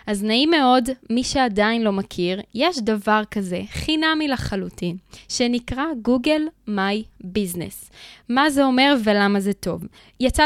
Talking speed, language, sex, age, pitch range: 130 wpm, Hebrew, female, 20-39, 205-270 Hz